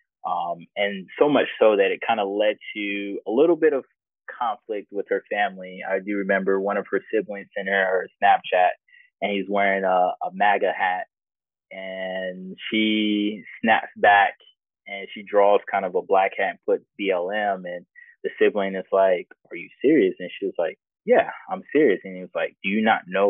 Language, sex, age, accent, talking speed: English, male, 20-39, American, 195 wpm